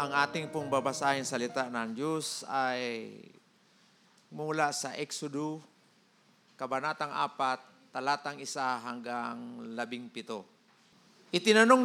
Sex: male